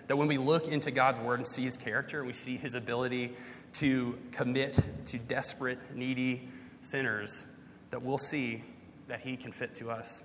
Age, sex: 30-49, male